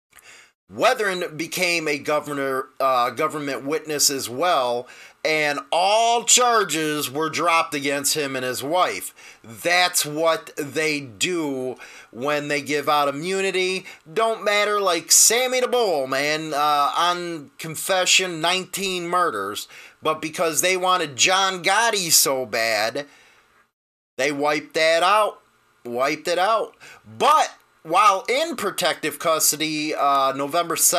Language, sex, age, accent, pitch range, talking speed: English, male, 30-49, American, 145-190 Hz, 120 wpm